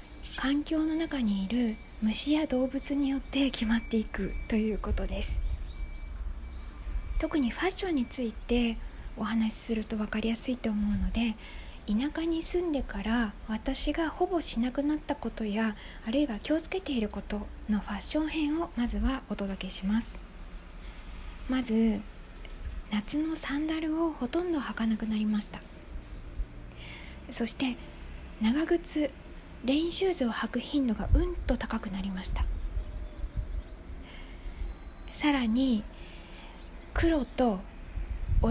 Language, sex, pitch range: Japanese, female, 190-285 Hz